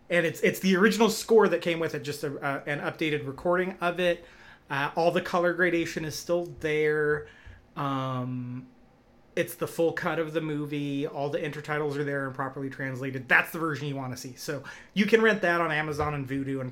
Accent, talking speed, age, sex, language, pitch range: American, 210 wpm, 30-49, male, English, 140-175 Hz